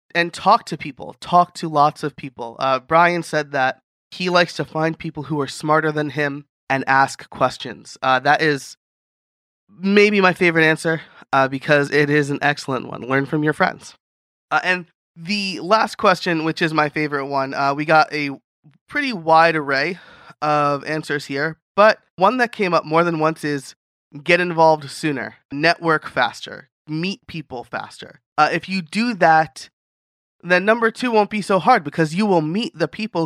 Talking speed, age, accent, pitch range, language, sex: 180 wpm, 20-39, American, 145-185 Hz, English, male